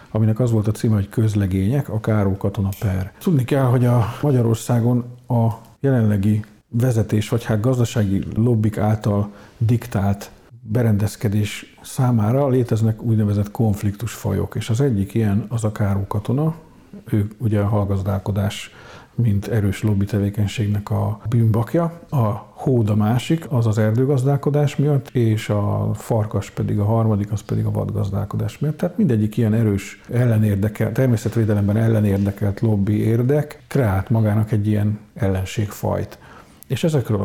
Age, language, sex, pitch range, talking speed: 50-69, Hungarian, male, 105-120 Hz, 130 wpm